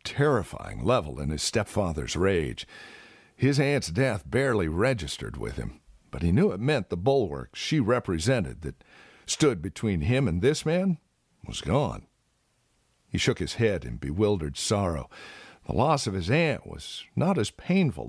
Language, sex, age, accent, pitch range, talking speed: English, male, 50-69, American, 85-145 Hz, 155 wpm